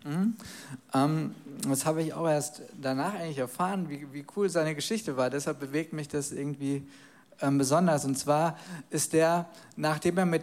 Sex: male